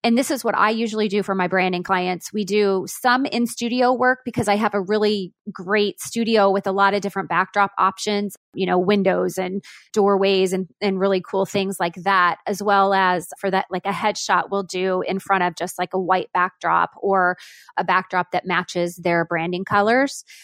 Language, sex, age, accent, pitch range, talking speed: English, female, 20-39, American, 190-240 Hz, 205 wpm